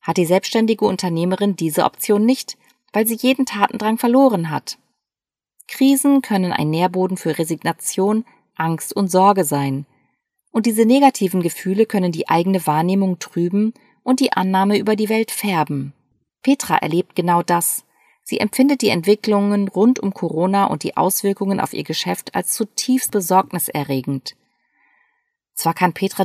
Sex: female